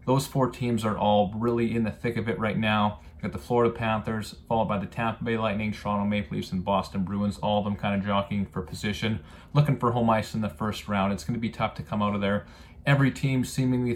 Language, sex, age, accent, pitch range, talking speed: English, male, 30-49, American, 100-115 Hz, 250 wpm